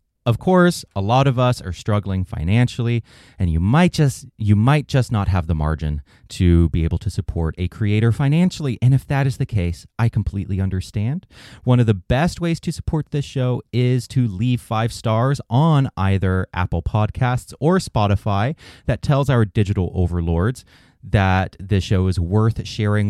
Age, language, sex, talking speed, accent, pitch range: 30-49, English, male, 175 wpm, American, 95-130 Hz